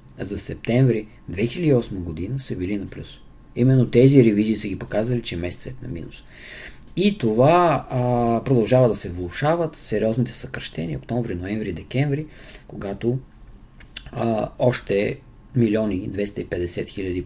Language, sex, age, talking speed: Bulgarian, male, 50-69, 130 wpm